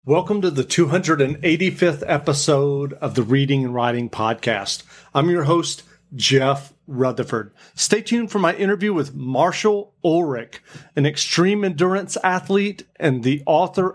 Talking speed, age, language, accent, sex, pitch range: 135 wpm, 40-59, English, American, male, 140-170 Hz